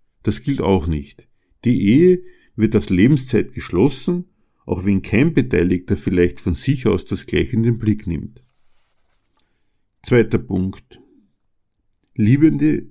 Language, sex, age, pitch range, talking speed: German, male, 50-69, 100-130 Hz, 125 wpm